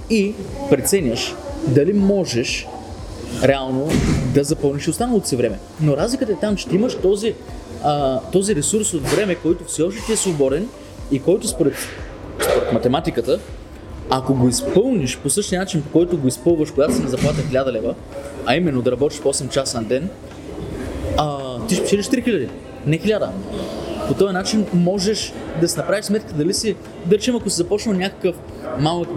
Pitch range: 140-200 Hz